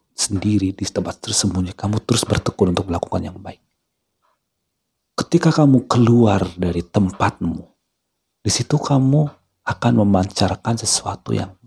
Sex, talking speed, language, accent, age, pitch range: male, 120 wpm, Indonesian, native, 40-59, 95-120 Hz